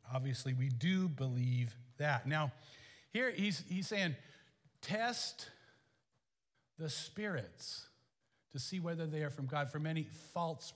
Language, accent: English, American